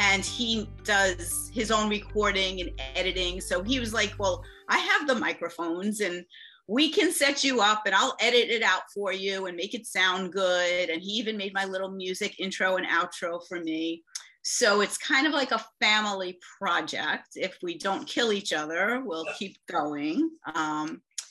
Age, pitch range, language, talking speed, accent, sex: 30-49, 190-260 Hz, English, 185 wpm, American, female